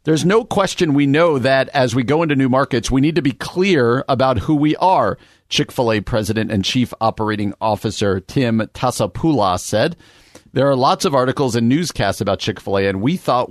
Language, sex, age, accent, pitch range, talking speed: English, male, 50-69, American, 110-150 Hz, 185 wpm